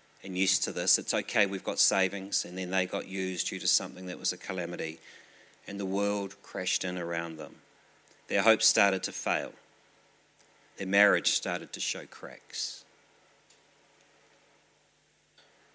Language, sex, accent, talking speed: English, male, Australian, 150 wpm